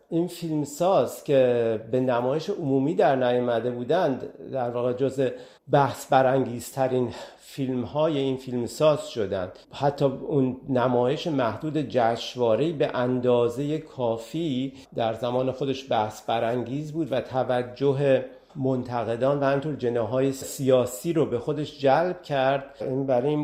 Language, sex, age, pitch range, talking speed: Persian, male, 50-69, 125-145 Hz, 120 wpm